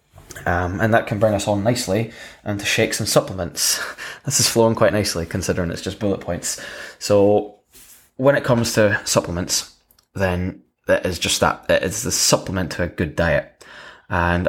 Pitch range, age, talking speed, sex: 95-110 Hz, 10-29, 175 wpm, male